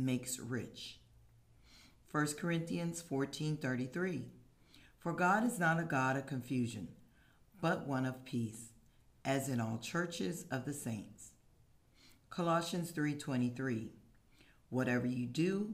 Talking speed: 120 wpm